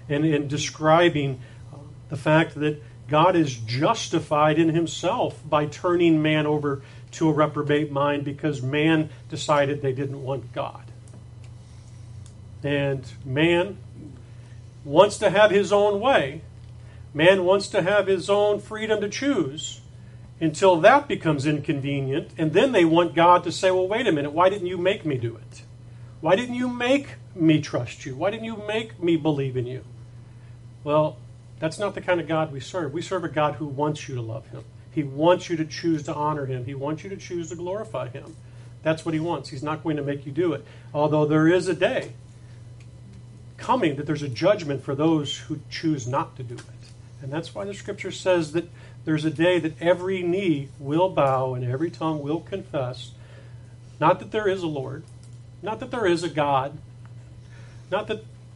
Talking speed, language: 185 wpm, English